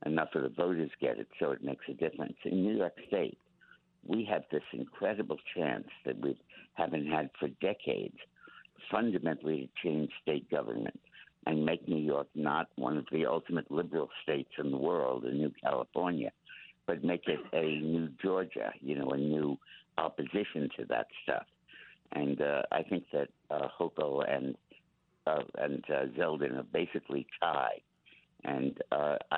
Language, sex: English, male